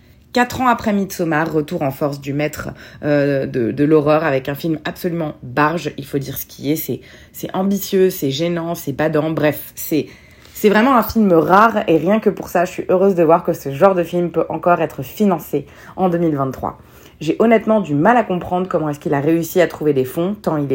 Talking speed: 220 wpm